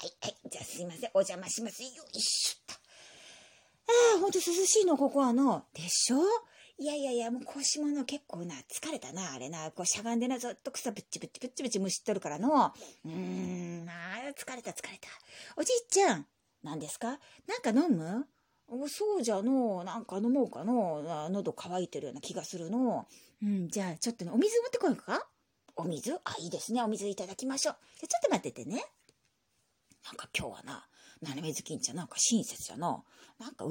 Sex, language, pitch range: female, Japanese, 190-310 Hz